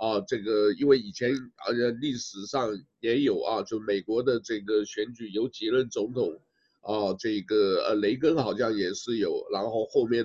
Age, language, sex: 50-69, Chinese, male